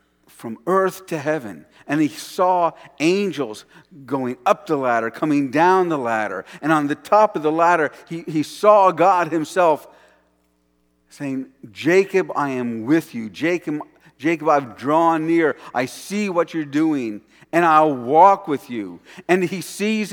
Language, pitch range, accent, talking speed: English, 145-195 Hz, American, 155 wpm